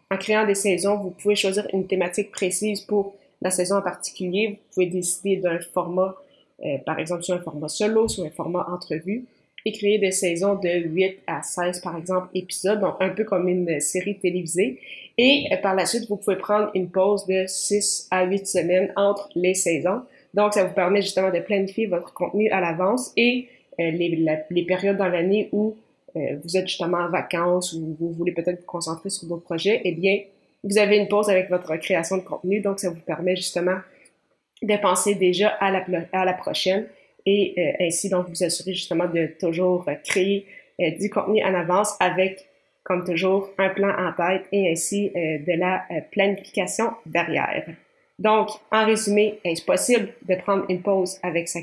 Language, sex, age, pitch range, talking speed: French, female, 20-39, 180-205 Hz, 195 wpm